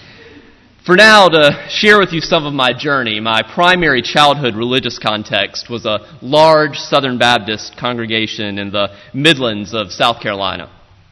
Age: 30-49